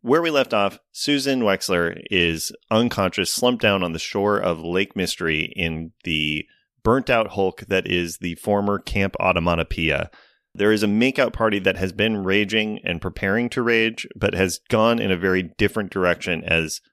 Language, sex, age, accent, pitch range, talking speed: English, male, 30-49, American, 85-110 Hz, 170 wpm